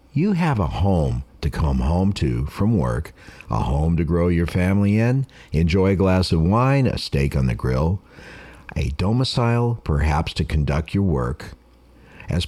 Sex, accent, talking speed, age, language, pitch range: male, American, 170 wpm, 60-79, English, 75-105 Hz